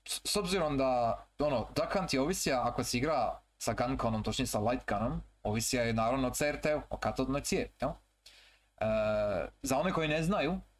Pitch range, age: 115-155 Hz, 30-49